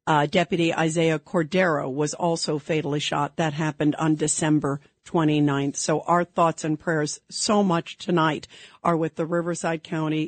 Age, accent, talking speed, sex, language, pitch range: 50-69, American, 150 wpm, female, English, 160-240 Hz